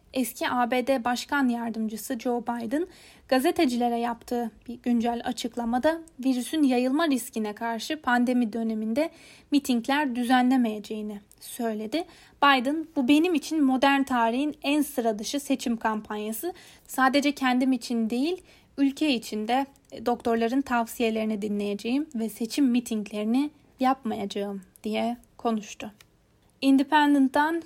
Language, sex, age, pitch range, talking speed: Turkish, female, 20-39, 225-280 Hz, 105 wpm